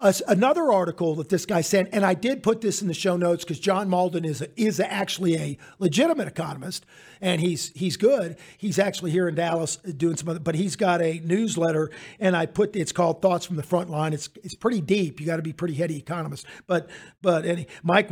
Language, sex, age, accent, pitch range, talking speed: English, male, 50-69, American, 165-195 Hz, 230 wpm